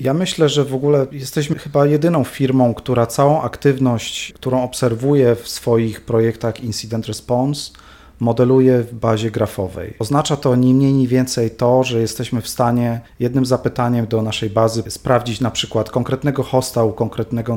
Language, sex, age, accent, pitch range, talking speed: Polish, male, 30-49, native, 110-125 Hz, 155 wpm